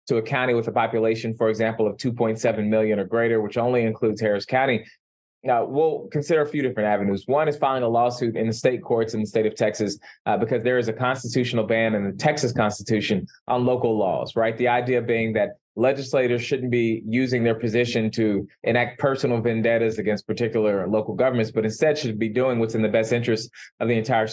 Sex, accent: male, American